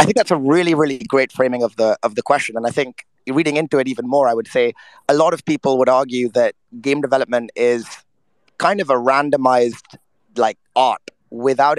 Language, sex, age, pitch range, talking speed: English, male, 30-49, 130-160 Hz, 210 wpm